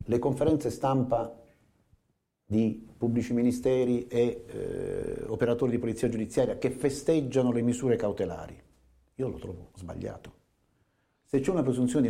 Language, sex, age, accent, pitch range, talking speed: Italian, male, 40-59, native, 125-180 Hz, 130 wpm